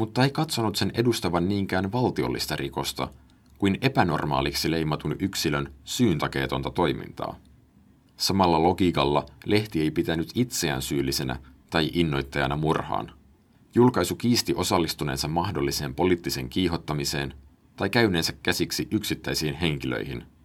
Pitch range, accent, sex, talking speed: 70-90 Hz, native, male, 105 wpm